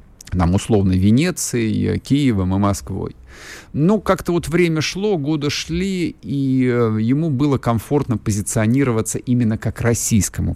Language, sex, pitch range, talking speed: Russian, male, 90-140 Hz, 120 wpm